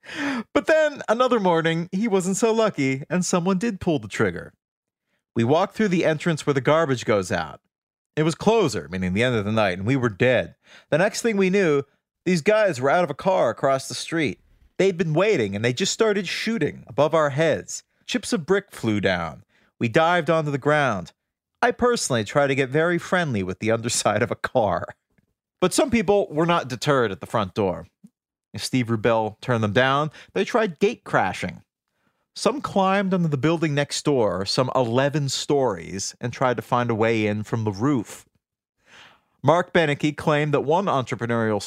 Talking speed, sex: 190 wpm, male